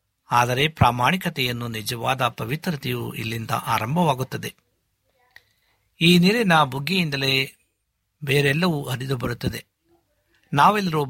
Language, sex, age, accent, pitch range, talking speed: Kannada, male, 60-79, native, 115-145 Hz, 70 wpm